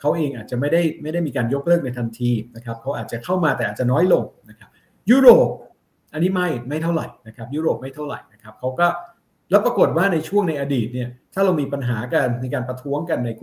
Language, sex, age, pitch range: Thai, male, 60-79, 125-170 Hz